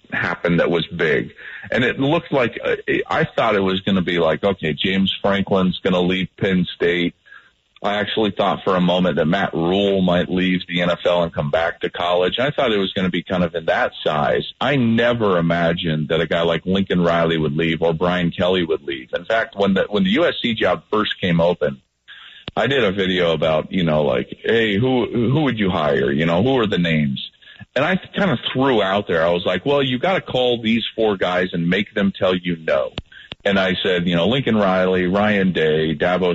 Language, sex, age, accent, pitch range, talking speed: English, male, 40-59, American, 85-100 Hz, 225 wpm